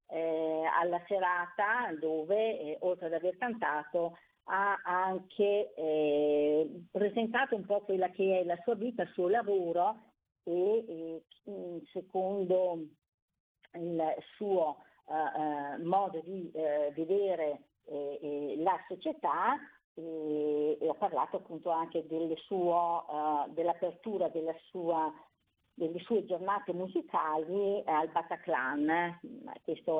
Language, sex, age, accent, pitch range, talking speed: Italian, female, 50-69, native, 160-200 Hz, 115 wpm